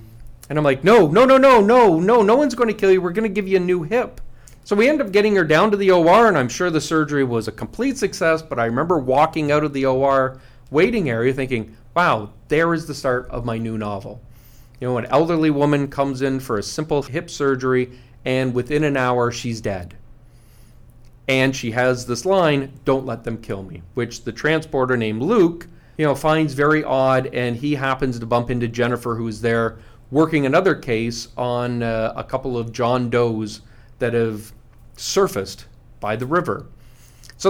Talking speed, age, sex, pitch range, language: 200 wpm, 40-59, male, 120-155 Hz, English